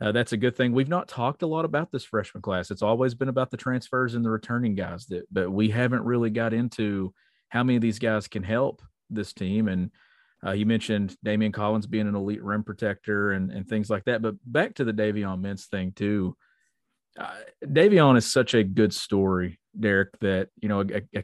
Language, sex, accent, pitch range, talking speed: English, male, American, 100-115 Hz, 220 wpm